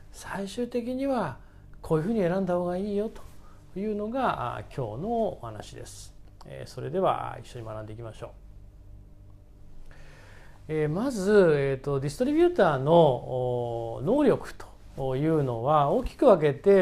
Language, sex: Japanese, male